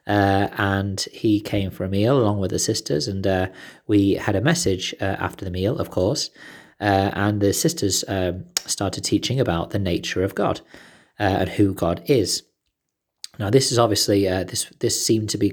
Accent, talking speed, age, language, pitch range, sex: British, 195 wpm, 20-39, English, 90-105 Hz, male